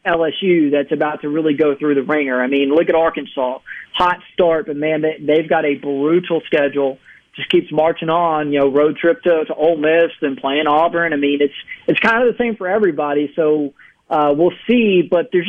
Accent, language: American, English